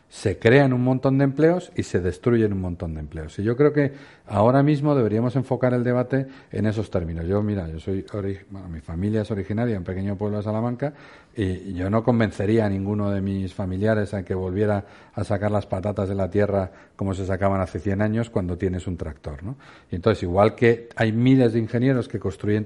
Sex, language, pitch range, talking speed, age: male, Spanish, 100-125 Hz, 215 wpm, 50-69